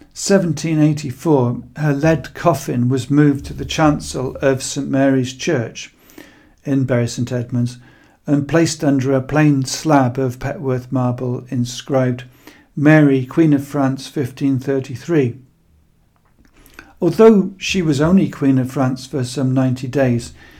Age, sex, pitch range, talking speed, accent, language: 50-69, male, 130-155 Hz, 125 wpm, British, English